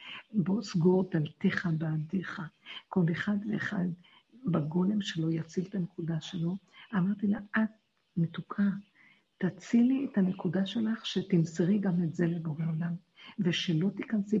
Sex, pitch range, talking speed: female, 170-210 Hz, 120 wpm